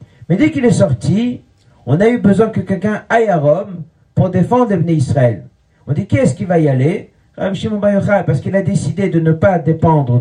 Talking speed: 205 wpm